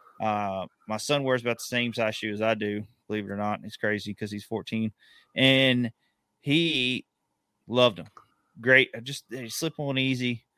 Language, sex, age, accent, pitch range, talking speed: English, male, 30-49, American, 115-150 Hz, 175 wpm